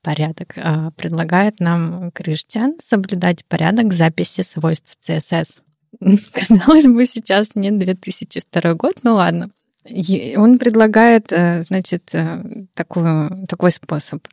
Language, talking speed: Russian, 100 wpm